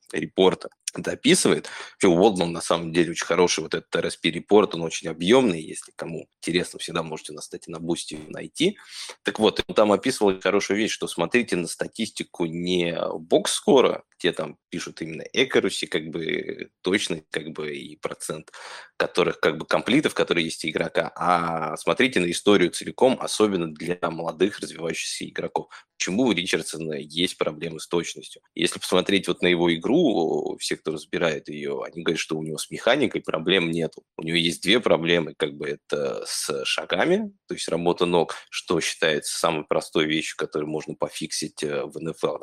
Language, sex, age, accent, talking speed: Russian, male, 20-39, native, 165 wpm